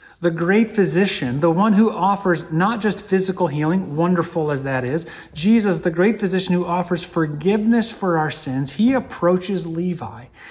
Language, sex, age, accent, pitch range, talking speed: English, male, 30-49, American, 120-180 Hz, 160 wpm